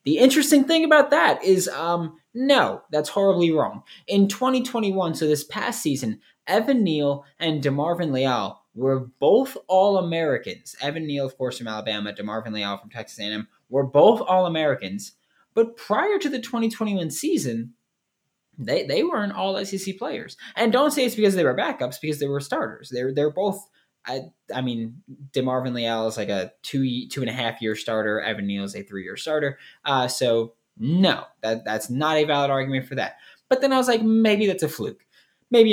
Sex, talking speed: male, 185 wpm